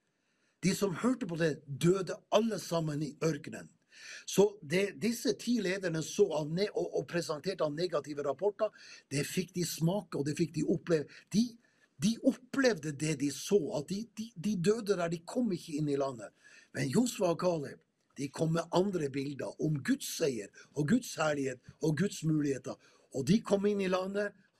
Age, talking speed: 60-79, 175 wpm